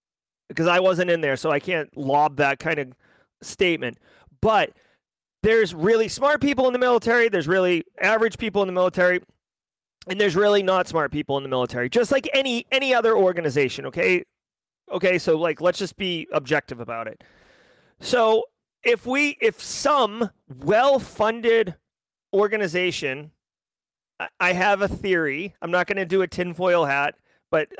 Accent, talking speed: American, 155 wpm